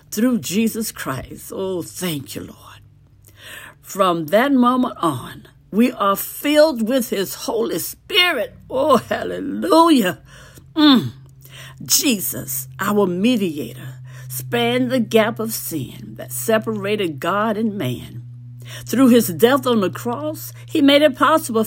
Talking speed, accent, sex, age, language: 120 wpm, American, female, 60-79, English